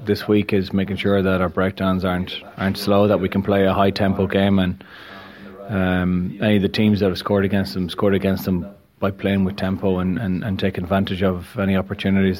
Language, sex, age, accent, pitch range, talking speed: English, male, 20-39, Irish, 95-100 Hz, 220 wpm